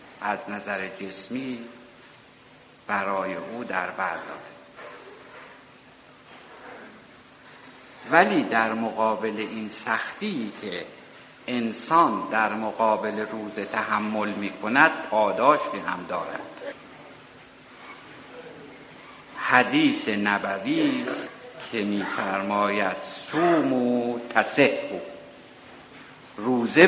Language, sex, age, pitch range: Persian, male, 60-79, 110-120 Hz